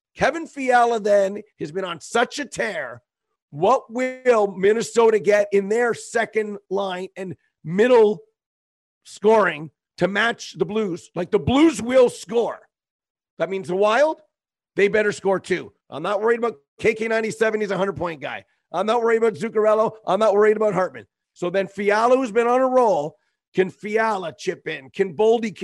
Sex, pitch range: male, 185-235 Hz